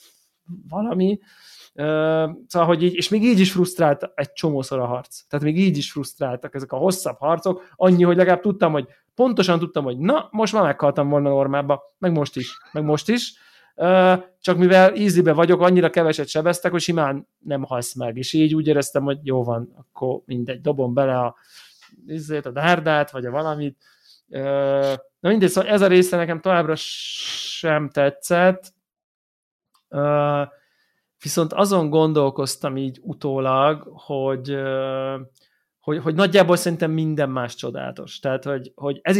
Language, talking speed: Hungarian, 155 wpm